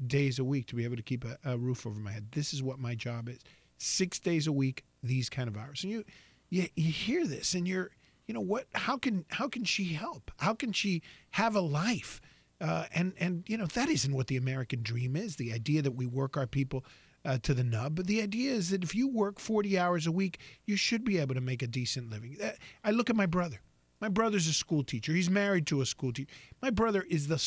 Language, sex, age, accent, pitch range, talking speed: English, male, 40-59, American, 135-205 Hz, 255 wpm